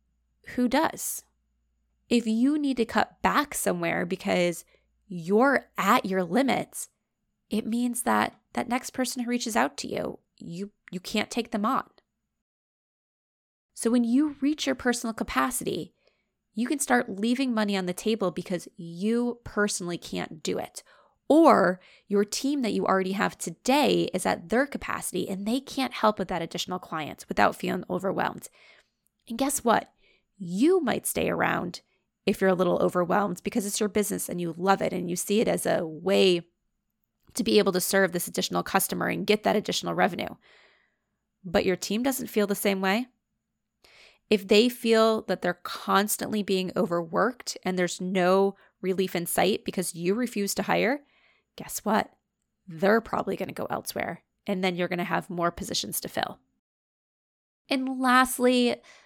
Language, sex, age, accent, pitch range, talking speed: English, female, 20-39, American, 185-240 Hz, 165 wpm